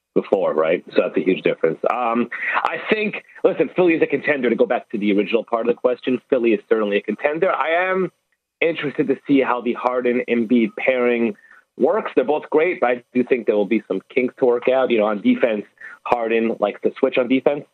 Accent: American